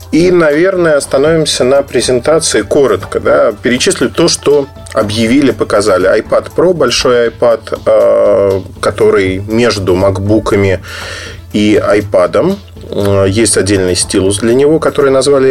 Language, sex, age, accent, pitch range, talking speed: Russian, male, 30-49, native, 100-155 Hz, 110 wpm